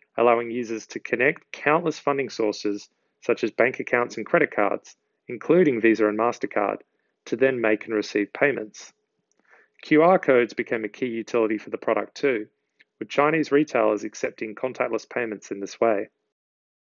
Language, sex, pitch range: English, male, 110-150 Hz